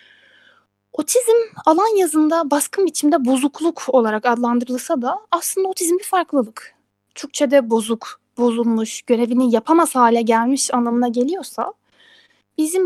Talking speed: 105 wpm